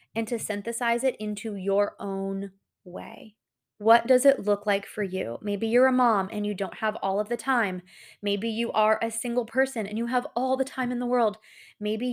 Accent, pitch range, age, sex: American, 200-235 Hz, 20-39, female